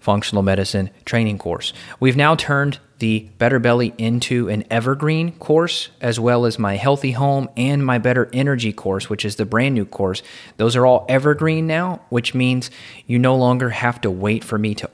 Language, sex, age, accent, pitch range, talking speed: English, male, 30-49, American, 105-125 Hz, 190 wpm